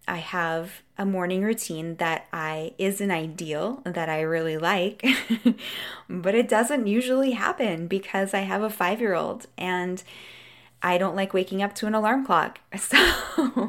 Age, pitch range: 20-39, 170-210 Hz